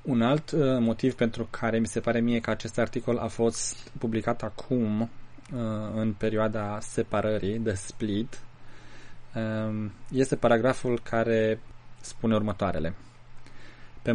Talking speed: 115 wpm